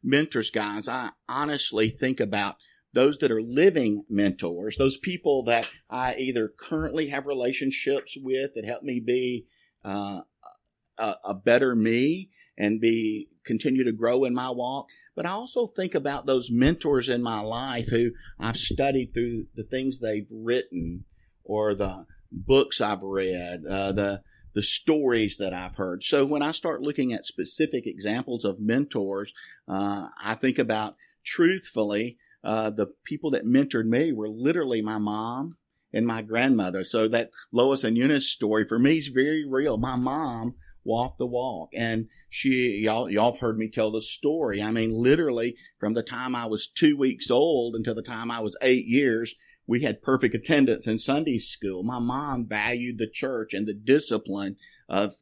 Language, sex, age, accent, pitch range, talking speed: English, male, 50-69, American, 105-125 Hz, 170 wpm